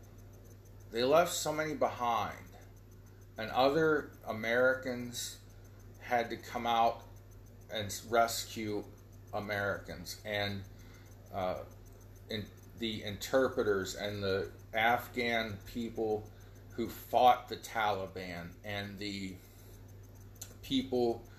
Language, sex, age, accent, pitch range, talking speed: English, male, 40-59, American, 95-115 Hz, 85 wpm